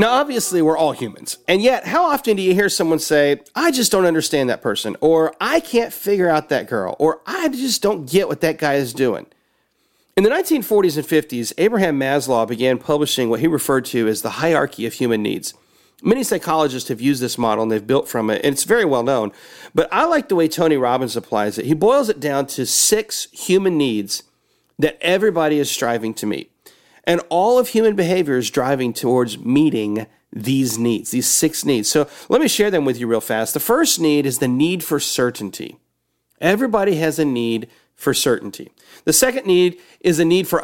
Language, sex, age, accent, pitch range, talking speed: English, male, 40-59, American, 130-195 Hz, 205 wpm